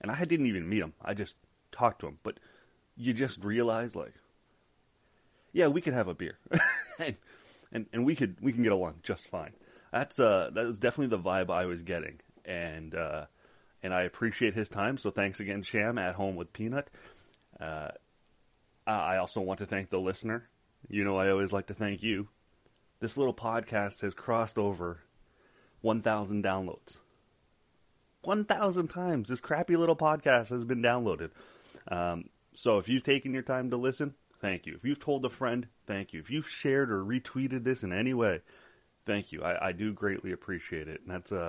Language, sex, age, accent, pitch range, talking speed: English, male, 30-49, American, 95-125 Hz, 185 wpm